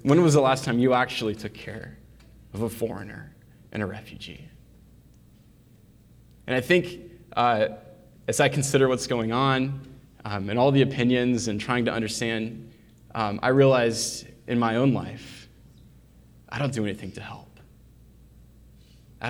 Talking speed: 150 wpm